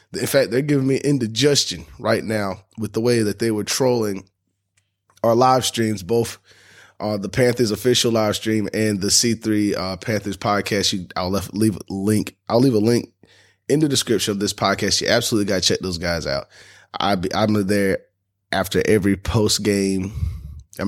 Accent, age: American, 20-39